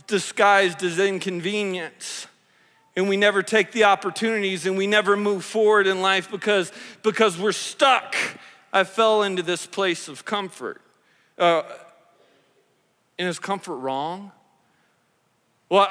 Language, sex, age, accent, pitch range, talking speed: English, male, 40-59, American, 175-215 Hz, 130 wpm